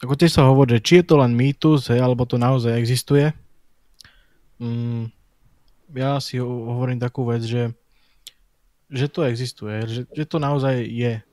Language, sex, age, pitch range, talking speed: Slovak, male, 20-39, 115-130 Hz, 160 wpm